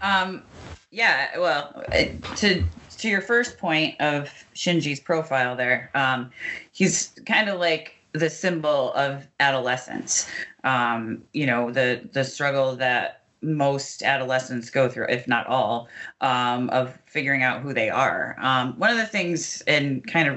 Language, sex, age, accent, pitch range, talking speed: English, female, 30-49, American, 135-165 Hz, 145 wpm